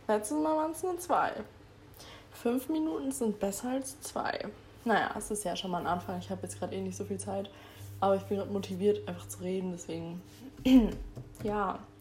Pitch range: 165-225 Hz